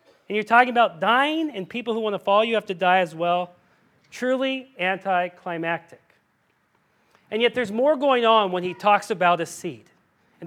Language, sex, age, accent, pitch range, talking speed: English, male, 40-59, American, 200-255 Hz, 185 wpm